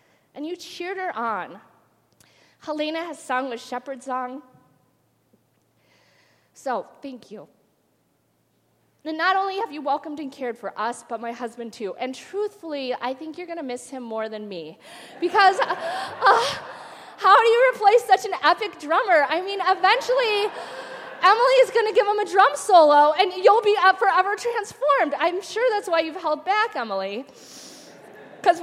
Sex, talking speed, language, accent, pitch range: female, 160 wpm, English, American, 225-370 Hz